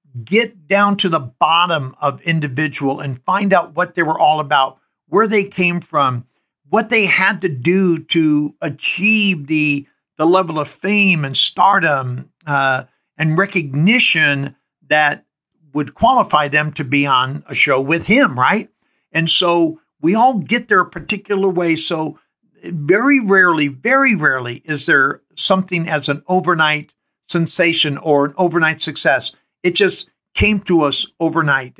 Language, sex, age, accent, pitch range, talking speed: English, male, 60-79, American, 150-195 Hz, 150 wpm